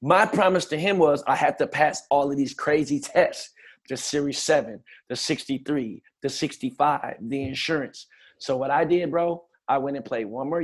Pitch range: 130-150 Hz